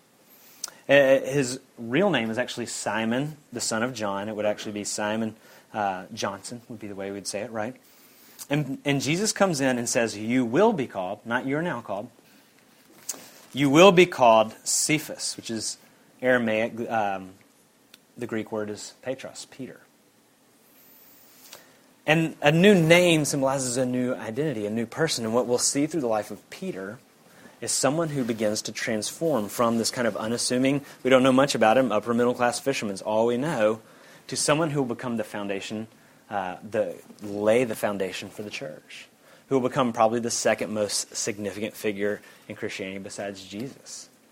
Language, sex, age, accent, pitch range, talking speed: English, male, 30-49, American, 110-135 Hz, 170 wpm